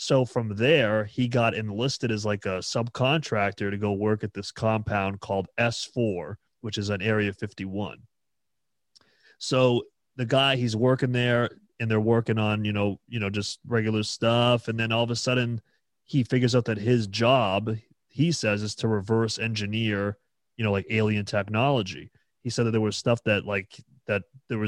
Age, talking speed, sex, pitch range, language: 30-49, 175 wpm, male, 105-120 Hz, English